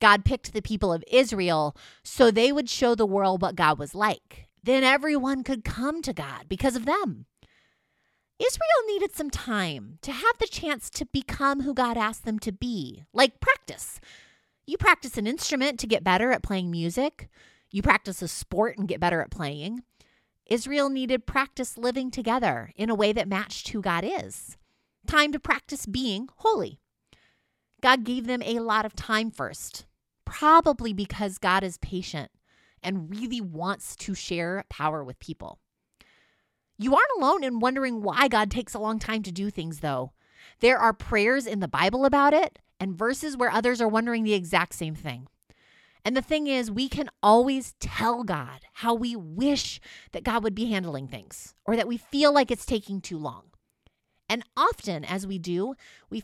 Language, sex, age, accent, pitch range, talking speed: English, female, 30-49, American, 190-260 Hz, 180 wpm